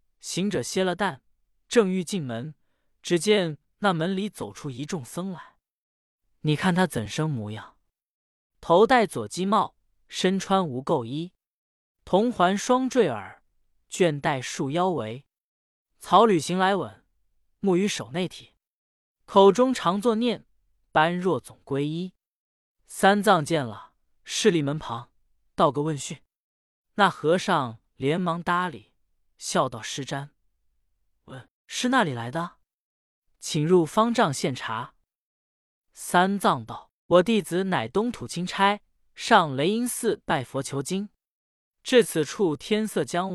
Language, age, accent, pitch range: Chinese, 20-39, native, 135-195 Hz